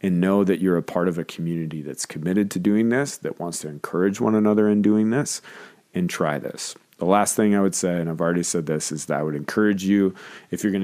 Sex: male